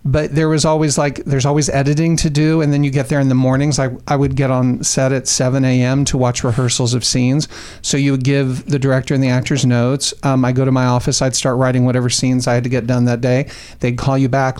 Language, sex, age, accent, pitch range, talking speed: English, male, 40-59, American, 125-140 Hz, 260 wpm